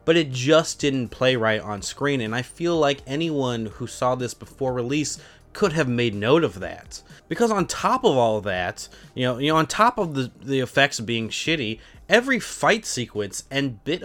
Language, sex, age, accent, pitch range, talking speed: English, male, 20-39, American, 115-150 Hz, 205 wpm